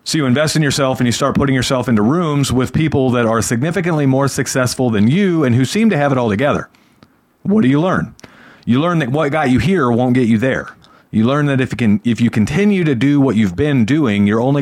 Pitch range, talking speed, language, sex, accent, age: 115-150 Hz, 250 wpm, English, male, American, 40-59